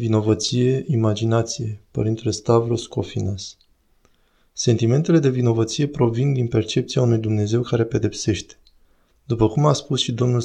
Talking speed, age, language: 120 wpm, 20-39, Romanian